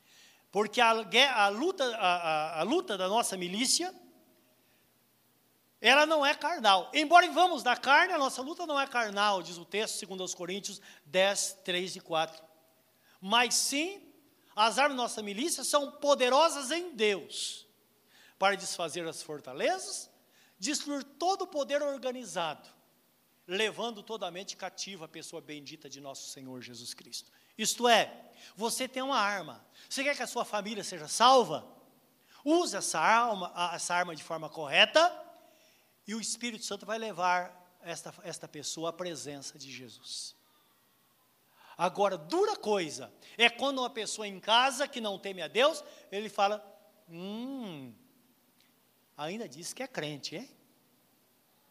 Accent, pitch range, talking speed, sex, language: Brazilian, 175-265 Hz, 140 wpm, male, Portuguese